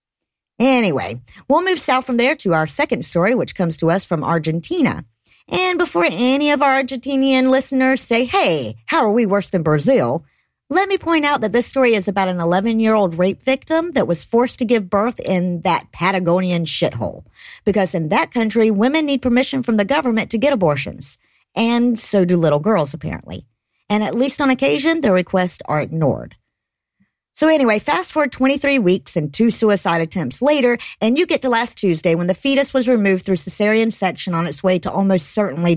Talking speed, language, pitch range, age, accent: 190 wpm, English, 180-270 Hz, 50-69, American